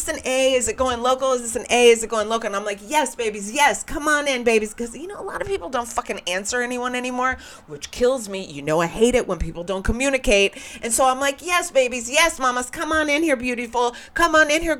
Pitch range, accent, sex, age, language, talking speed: 205-275 Hz, American, female, 40-59, English, 265 wpm